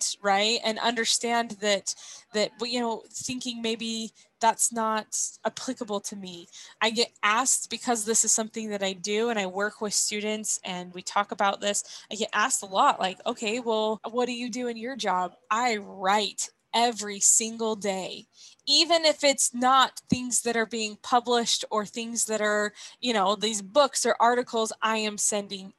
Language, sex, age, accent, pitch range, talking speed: English, female, 20-39, American, 210-245 Hz, 175 wpm